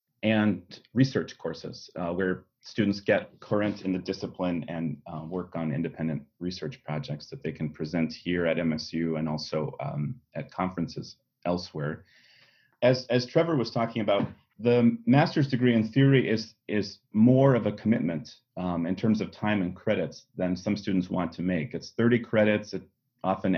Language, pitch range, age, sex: English, 90-110 Hz, 30-49, male